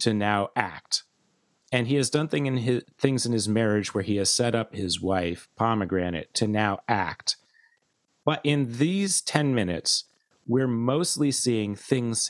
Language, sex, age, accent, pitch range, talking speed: English, male, 30-49, American, 100-135 Hz, 165 wpm